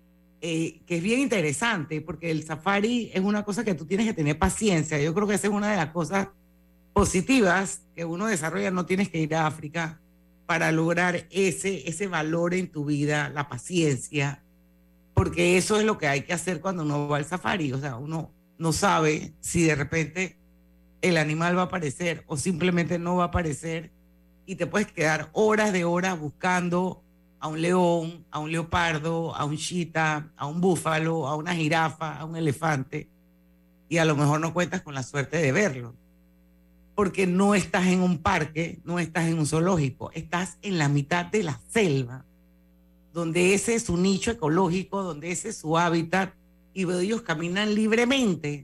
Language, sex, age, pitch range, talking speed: Spanish, female, 50-69, 150-185 Hz, 185 wpm